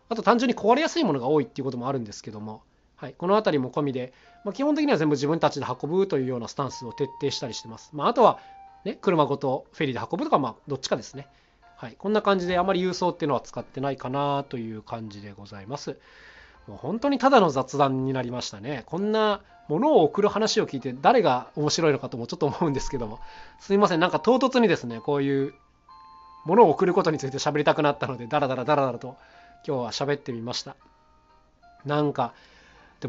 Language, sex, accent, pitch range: Japanese, male, native, 130-200 Hz